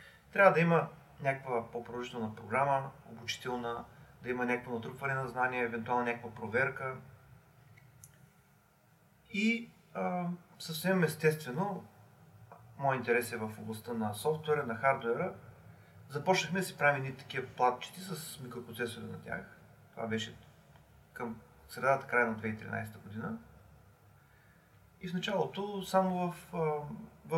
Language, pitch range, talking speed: Bulgarian, 120-175 Hz, 115 wpm